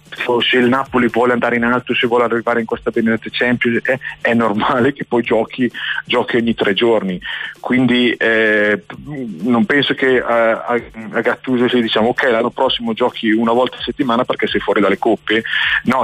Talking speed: 180 wpm